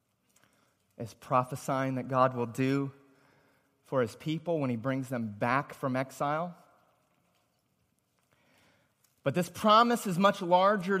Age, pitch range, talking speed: 30-49, 150-245 Hz, 120 wpm